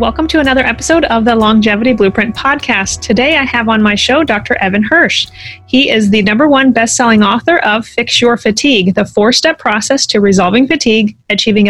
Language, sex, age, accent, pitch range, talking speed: English, female, 30-49, American, 200-245 Hz, 185 wpm